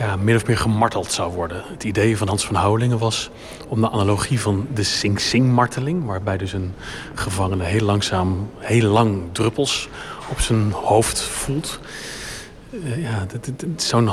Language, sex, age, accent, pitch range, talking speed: Dutch, male, 30-49, Dutch, 105-120 Hz, 170 wpm